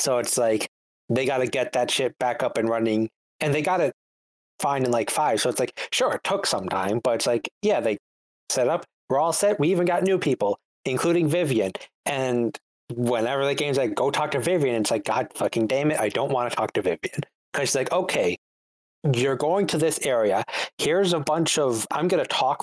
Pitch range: 105-155 Hz